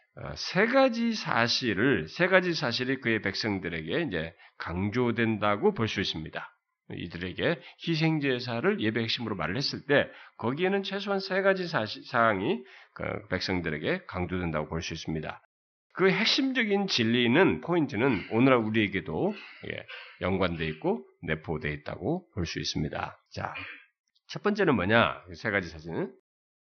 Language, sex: Korean, male